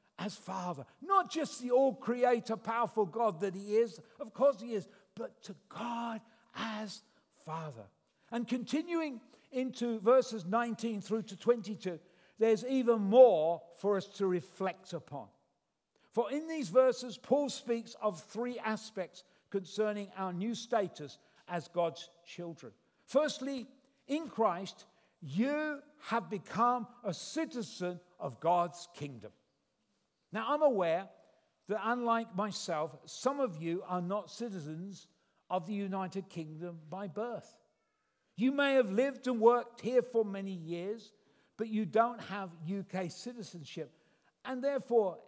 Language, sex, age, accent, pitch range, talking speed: English, male, 50-69, British, 185-240 Hz, 130 wpm